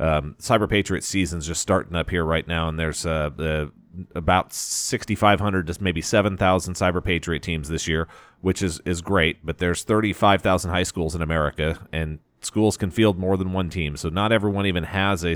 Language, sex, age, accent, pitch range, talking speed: English, male, 30-49, American, 85-105 Hz, 190 wpm